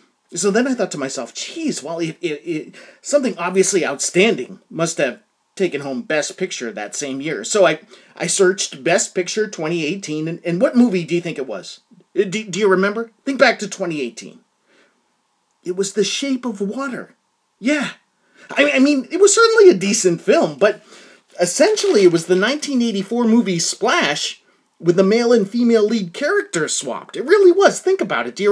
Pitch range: 185-290 Hz